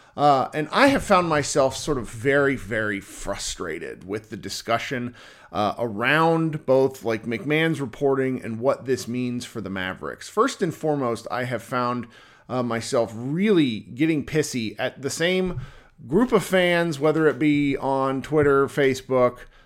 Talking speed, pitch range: 155 wpm, 115-155 Hz